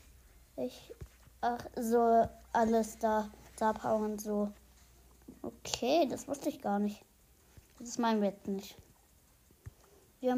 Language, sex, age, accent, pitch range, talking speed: German, female, 20-39, German, 210-265 Hz, 115 wpm